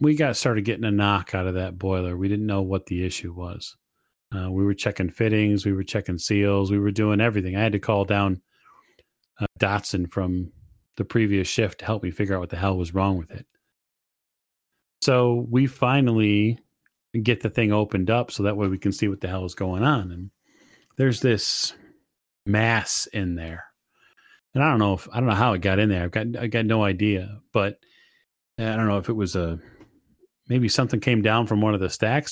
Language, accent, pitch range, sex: English, American, 95-120 Hz, male